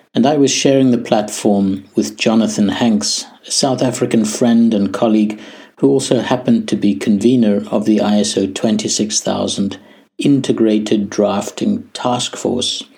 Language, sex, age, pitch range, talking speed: English, male, 60-79, 105-125 Hz, 135 wpm